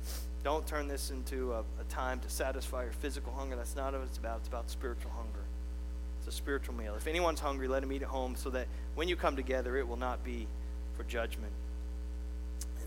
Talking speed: 215 wpm